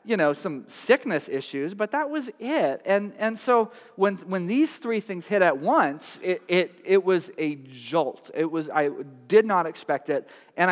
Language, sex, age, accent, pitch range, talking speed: English, male, 30-49, American, 145-200 Hz, 190 wpm